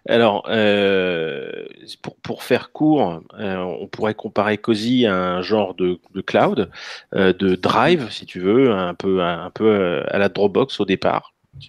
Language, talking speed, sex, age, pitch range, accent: French, 170 wpm, male, 30-49, 95-130 Hz, French